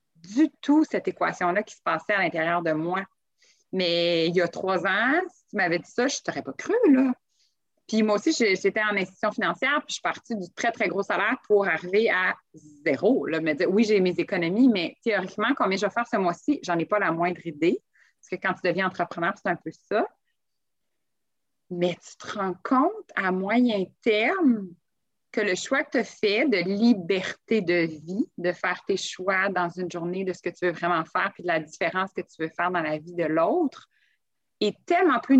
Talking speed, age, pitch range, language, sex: 215 wpm, 30-49, 180-235 Hz, French, female